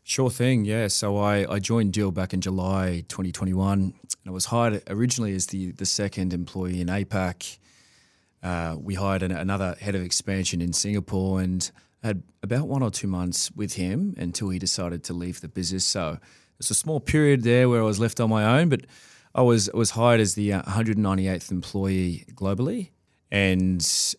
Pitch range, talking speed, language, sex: 90-105 Hz, 185 wpm, English, male